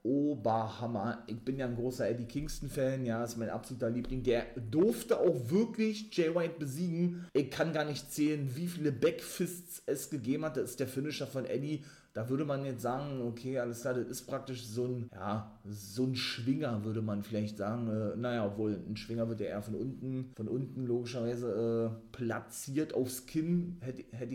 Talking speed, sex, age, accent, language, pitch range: 190 wpm, male, 30-49, German, German, 115-150 Hz